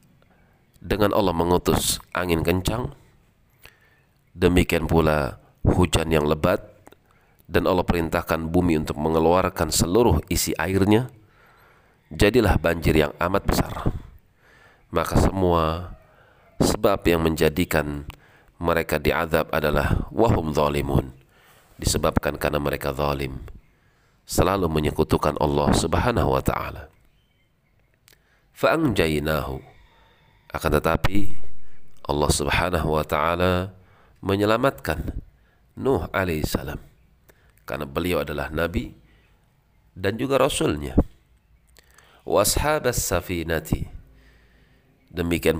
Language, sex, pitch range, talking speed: Indonesian, male, 75-95 Hz, 80 wpm